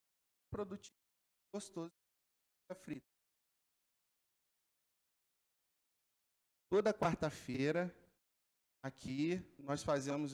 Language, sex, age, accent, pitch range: Portuguese, male, 50-69, Brazilian, 145-180 Hz